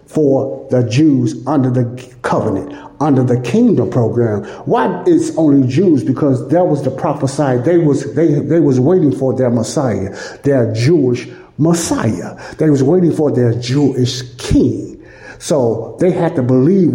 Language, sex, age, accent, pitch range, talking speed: English, male, 60-79, American, 125-155 Hz, 150 wpm